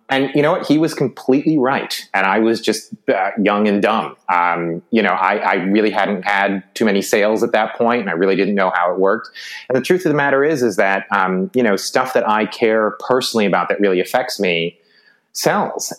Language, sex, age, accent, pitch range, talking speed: English, male, 30-49, American, 95-130 Hz, 230 wpm